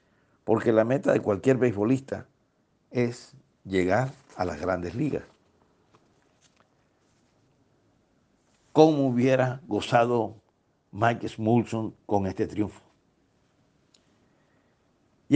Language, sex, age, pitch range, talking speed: Spanish, male, 60-79, 105-130 Hz, 80 wpm